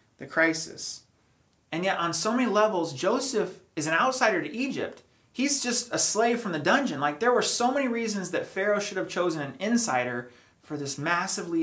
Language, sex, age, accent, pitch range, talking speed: English, male, 30-49, American, 140-190 Hz, 190 wpm